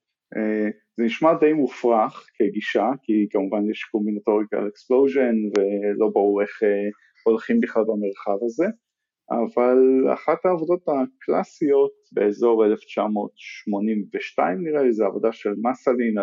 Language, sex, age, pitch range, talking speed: Hebrew, male, 50-69, 110-145 Hz, 105 wpm